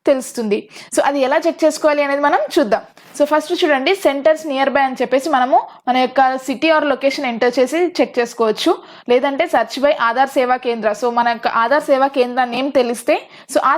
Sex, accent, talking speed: female, native, 185 wpm